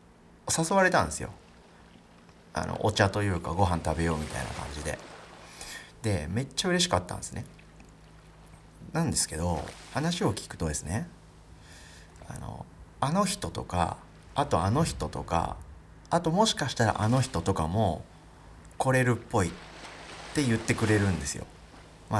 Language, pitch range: Japanese, 85-125 Hz